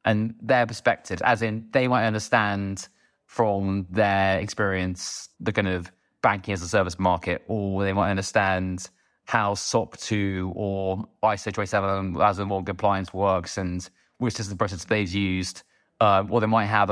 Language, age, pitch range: English, 20-39, 95-110 Hz